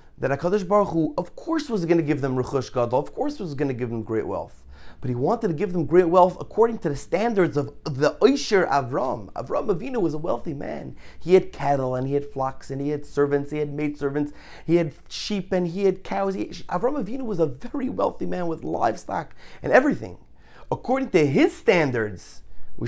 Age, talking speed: 30-49, 215 wpm